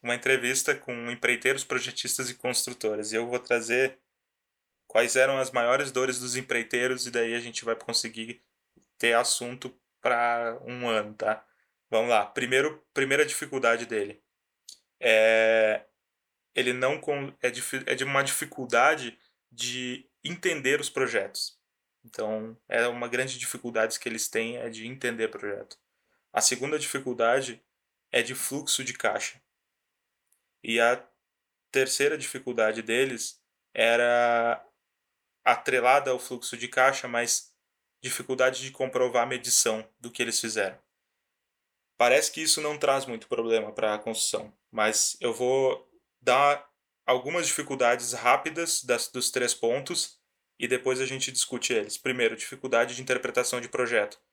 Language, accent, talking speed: Portuguese, Brazilian, 135 wpm